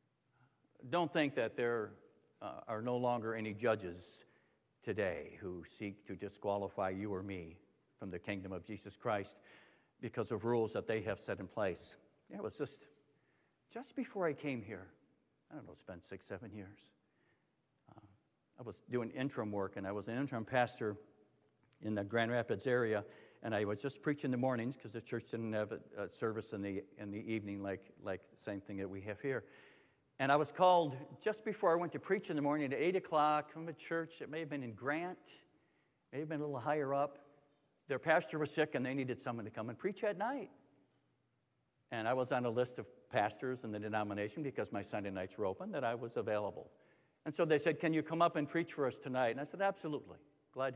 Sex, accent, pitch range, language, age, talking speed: male, American, 105-150 Hz, English, 60-79, 215 wpm